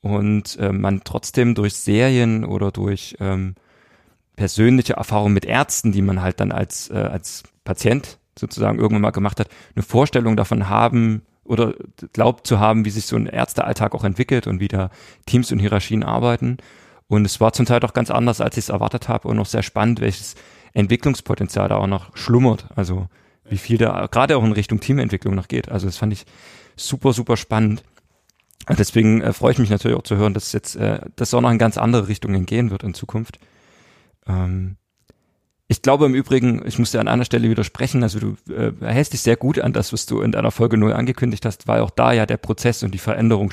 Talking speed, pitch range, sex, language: 200 wpm, 100-120 Hz, male, German